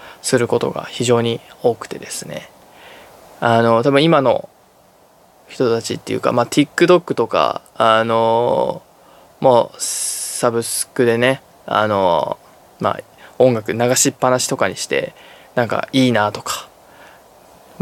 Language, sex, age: Japanese, male, 20-39